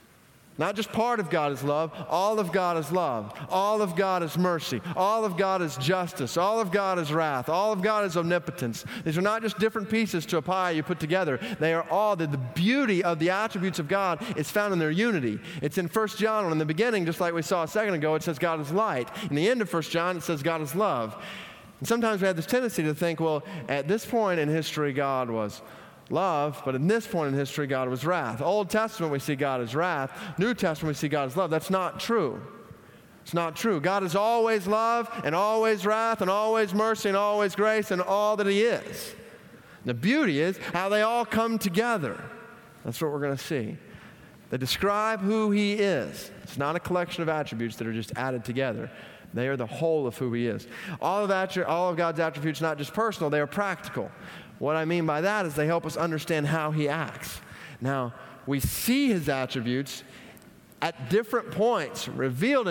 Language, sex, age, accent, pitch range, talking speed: English, male, 30-49, American, 150-210 Hz, 215 wpm